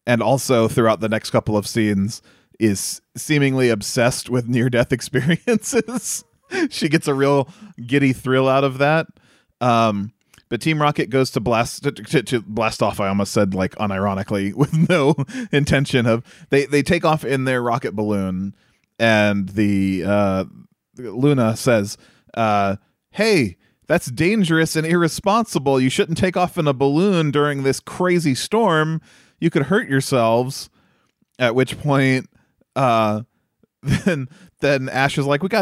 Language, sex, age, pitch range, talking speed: English, male, 30-49, 120-170 Hz, 150 wpm